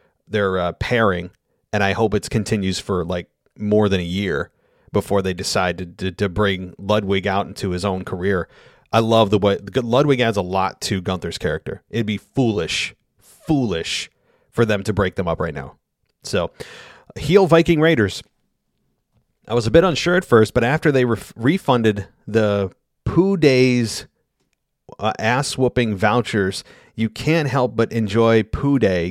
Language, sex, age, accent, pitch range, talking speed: English, male, 30-49, American, 100-120 Hz, 165 wpm